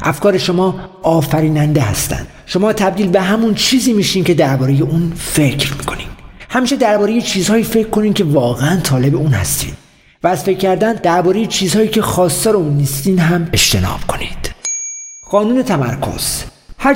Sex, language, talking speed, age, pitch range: male, Persian, 150 wpm, 50-69, 140-205 Hz